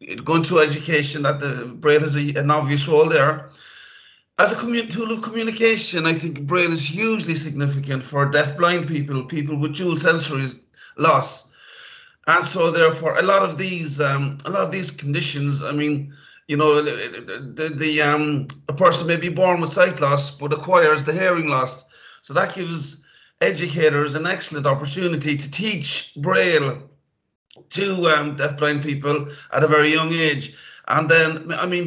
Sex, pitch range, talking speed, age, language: male, 145-165 Hz, 165 wpm, 30-49, English